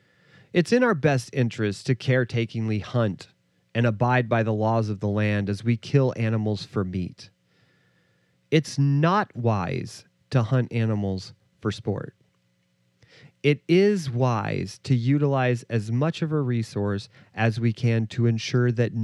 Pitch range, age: 105-140 Hz, 40-59